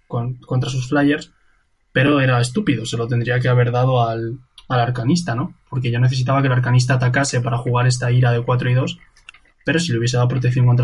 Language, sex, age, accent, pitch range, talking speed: Spanish, male, 20-39, Spanish, 120-140 Hz, 215 wpm